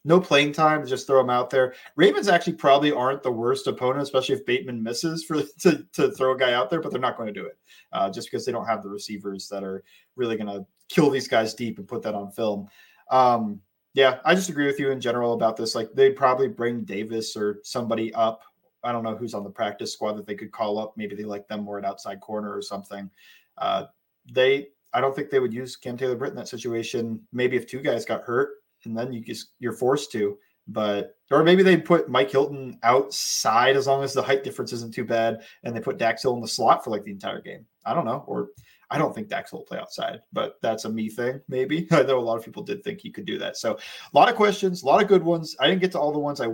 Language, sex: English, male